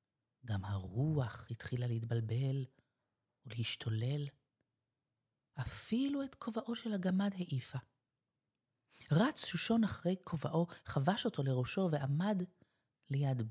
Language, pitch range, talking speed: Hebrew, 125-215 Hz, 90 wpm